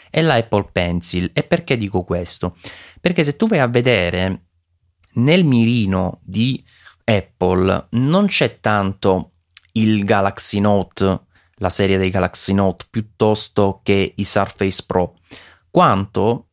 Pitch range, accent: 90-110 Hz, native